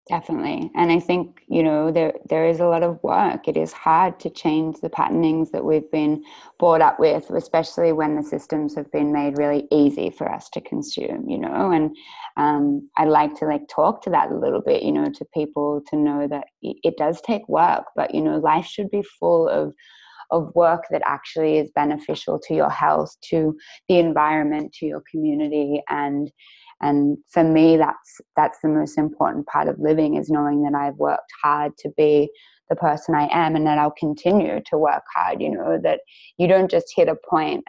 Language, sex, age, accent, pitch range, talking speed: English, female, 20-39, Australian, 150-165 Hz, 200 wpm